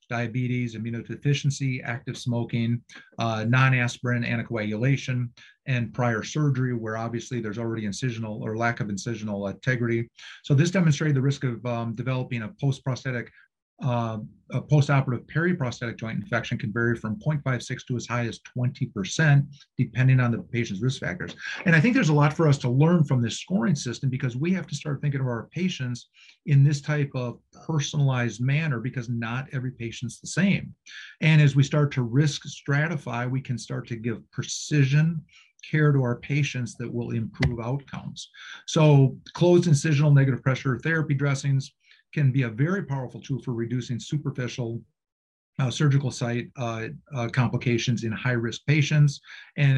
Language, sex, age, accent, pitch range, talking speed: English, male, 40-59, American, 120-145 Hz, 160 wpm